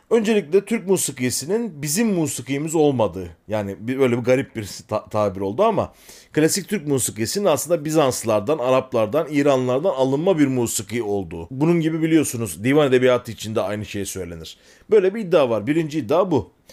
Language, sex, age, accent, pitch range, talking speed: Turkish, male, 40-59, native, 120-180 Hz, 155 wpm